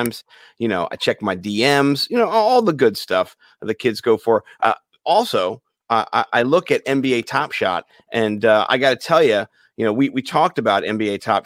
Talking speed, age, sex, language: 210 wpm, 40-59, male, English